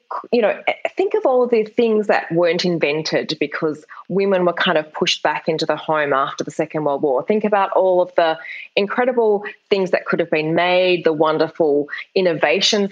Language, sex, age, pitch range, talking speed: English, female, 20-39, 165-205 Hz, 185 wpm